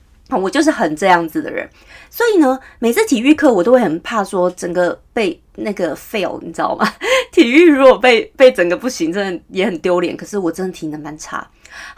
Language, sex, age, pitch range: Chinese, female, 30-49, 185-290 Hz